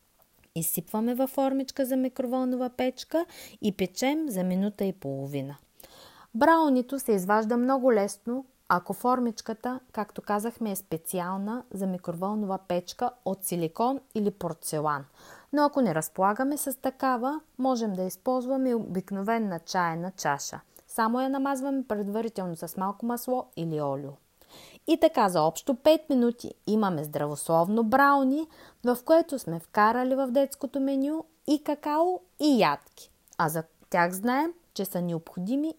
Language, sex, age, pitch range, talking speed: Bulgarian, female, 30-49, 180-270 Hz, 130 wpm